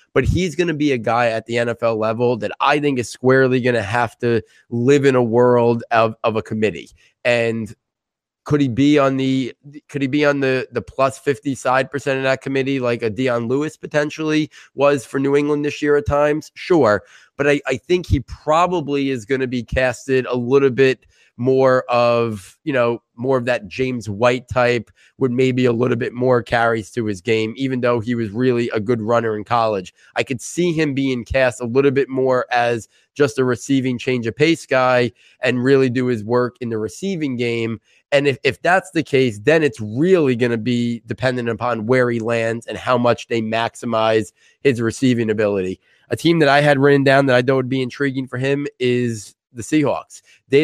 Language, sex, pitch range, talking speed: English, male, 115-135 Hz, 205 wpm